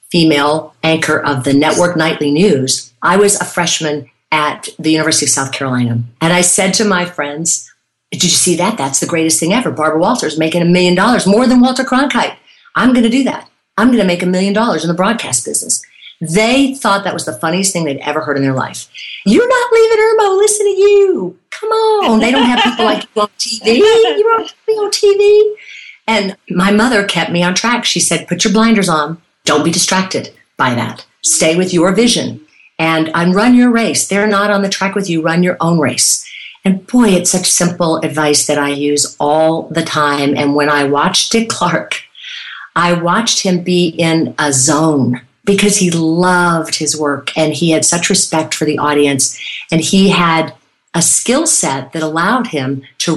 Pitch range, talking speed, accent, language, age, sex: 155-210 Hz, 200 wpm, American, English, 50-69, female